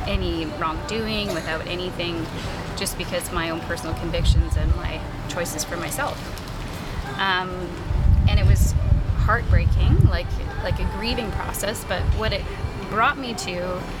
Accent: American